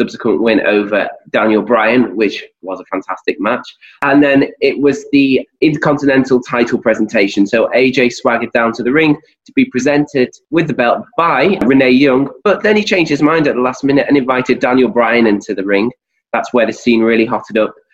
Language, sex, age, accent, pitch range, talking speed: English, male, 20-39, British, 110-135 Hz, 195 wpm